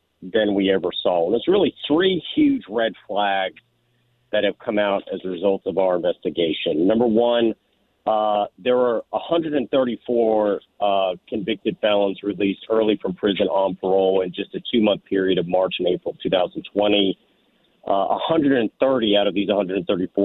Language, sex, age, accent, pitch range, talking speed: English, male, 40-59, American, 95-115 Hz, 155 wpm